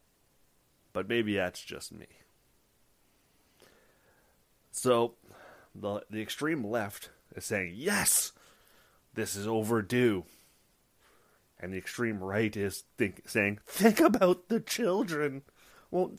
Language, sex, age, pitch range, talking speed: English, male, 30-49, 100-150 Hz, 105 wpm